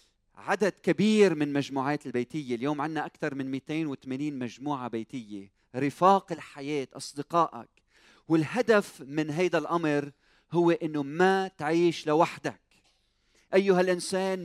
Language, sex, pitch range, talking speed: Arabic, male, 145-190 Hz, 110 wpm